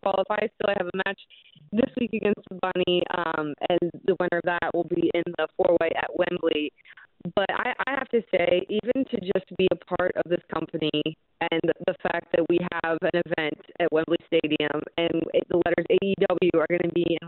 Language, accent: English, American